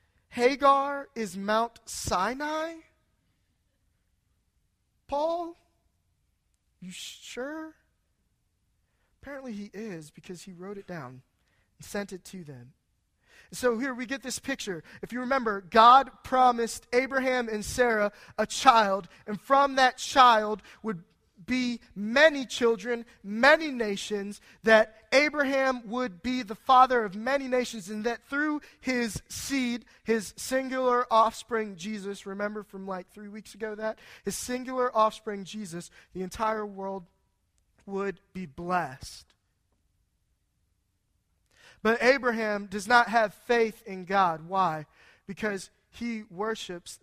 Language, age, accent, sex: English, 20-39, American, male